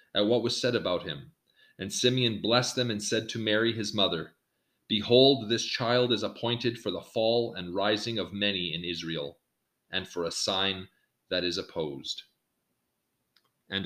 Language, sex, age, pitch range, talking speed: English, male, 30-49, 105-125 Hz, 165 wpm